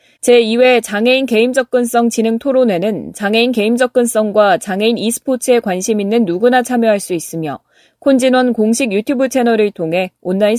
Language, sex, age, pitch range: Korean, female, 20-39, 200-255 Hz